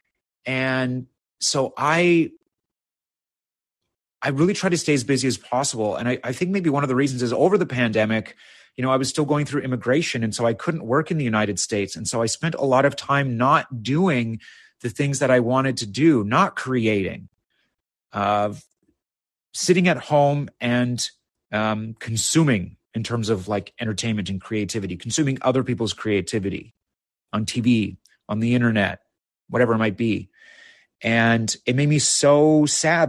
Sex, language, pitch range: male, English, 110-140 Hz